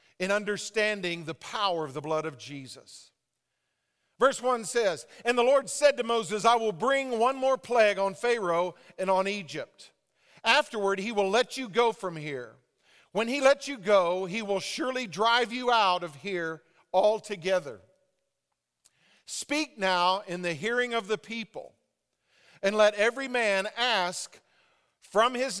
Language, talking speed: English, 155 wpm